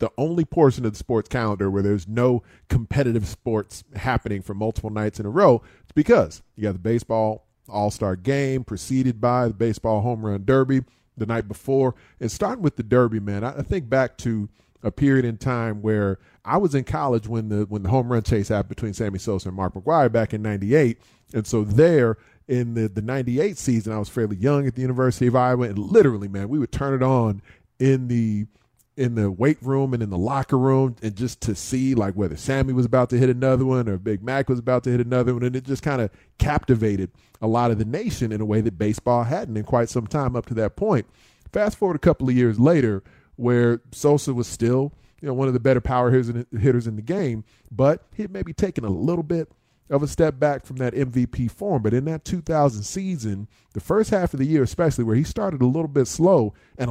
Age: 40-59